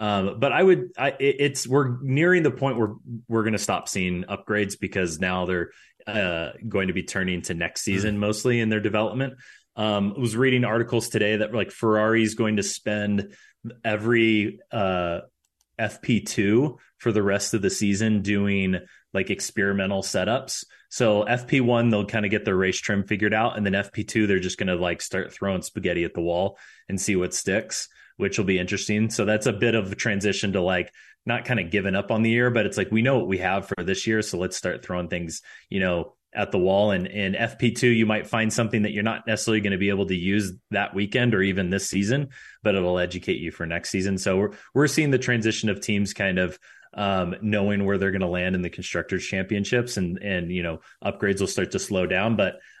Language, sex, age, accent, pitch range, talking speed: English, male, 30-49, American, 95-115 Hz, 215 wpm